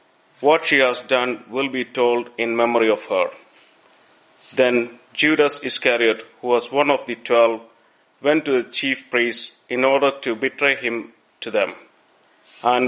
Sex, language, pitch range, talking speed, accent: male, English, 120-145 Hz, 155 wpm, Indian